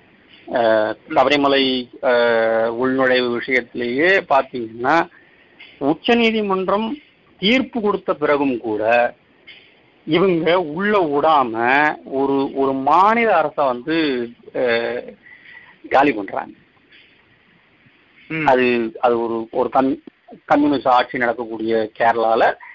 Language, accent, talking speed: Tamil, native, 75 wpm